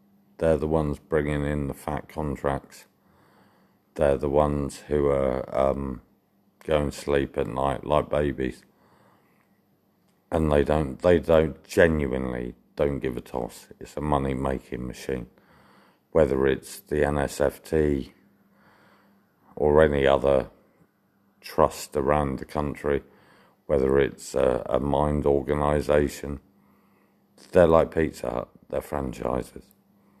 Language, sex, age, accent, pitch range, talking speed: English, male, 50-69, British, 65-75 Hz, 115 wpm